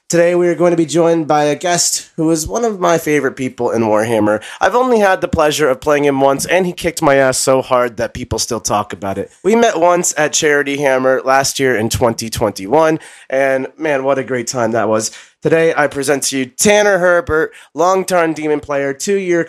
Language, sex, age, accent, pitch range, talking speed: English, male, 30-49, American, 115-155 Hz, 215 wpm